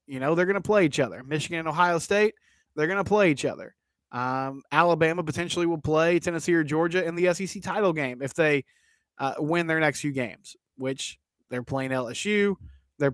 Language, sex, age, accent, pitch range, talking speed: English, male, 20-39, American, 145-205 Hz, 200 wpm